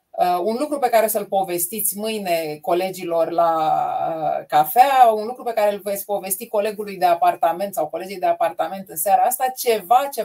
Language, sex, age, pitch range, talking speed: Romanian, female, 30-49, 185-255 Hz, 170 wpm